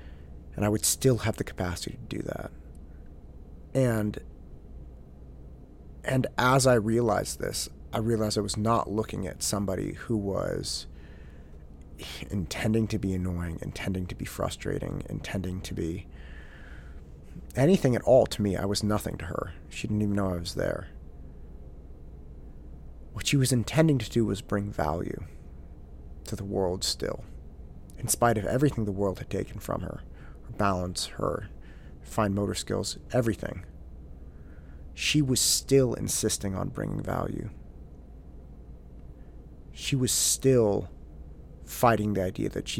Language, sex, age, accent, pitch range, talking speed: English, male, 30-49, American, 70-105 Hz, 135 wpm